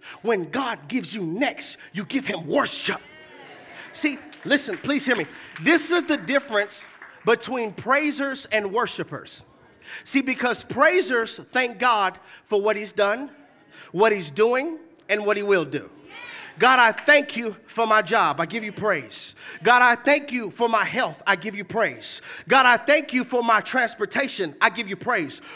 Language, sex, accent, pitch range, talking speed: English, male, American, 230-315 Hz, 170 wpm